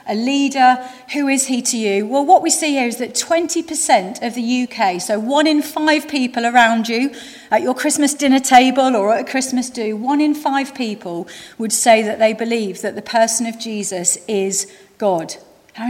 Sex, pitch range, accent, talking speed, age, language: female, 225-285 Hz, British, 195 wpm, 40-59, English